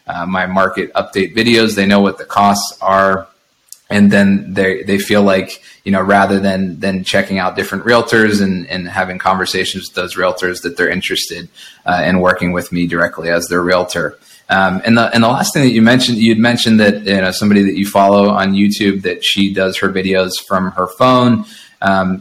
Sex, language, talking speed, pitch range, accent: male, English, 200 wpm, 95-100 Hz, American